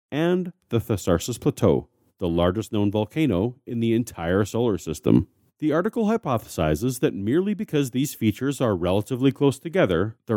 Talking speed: 150 wpm